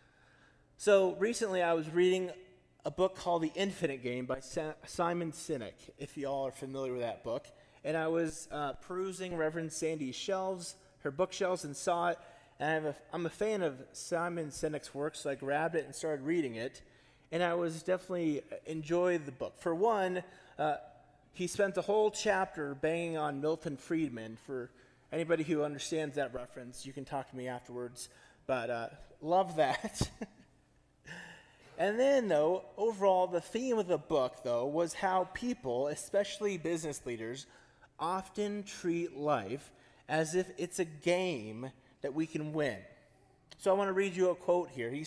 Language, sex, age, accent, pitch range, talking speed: English, male, 30-49, American, 145-190 Hz, 165 wpm